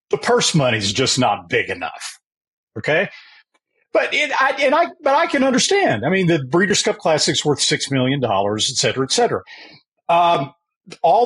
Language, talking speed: English, 185 wpm